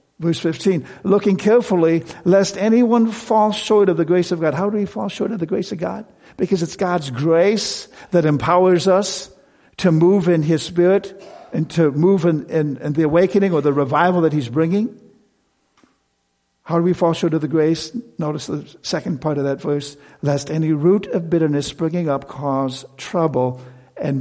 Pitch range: 145-185 Hz